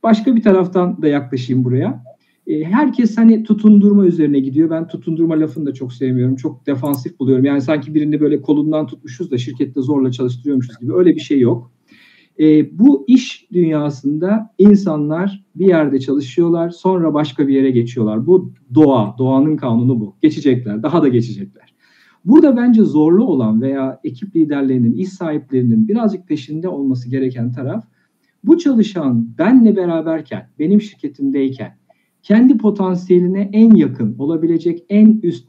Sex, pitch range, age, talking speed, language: male, 135-200 Hz, 50-69, 145 wpm, Turkish